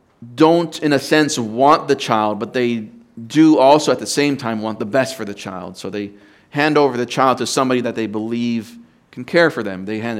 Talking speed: 225 wpm